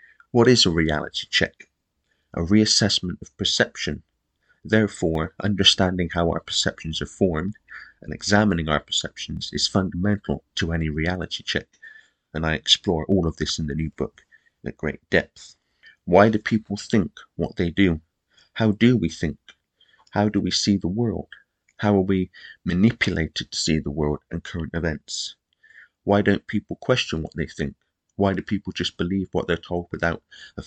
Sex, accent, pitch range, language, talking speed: male, British, 80-100 Hz, English, 165 wpm